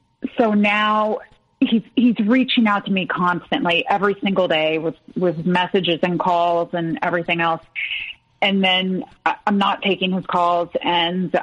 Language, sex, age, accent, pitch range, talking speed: English, female, 30-49, American, 180-220 Hz, 145 wpm